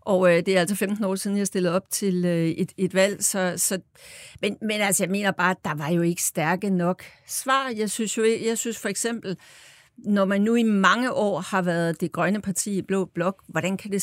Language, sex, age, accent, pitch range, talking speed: Danish, female, 60-79, native, 185-225 Hz, 235 wpm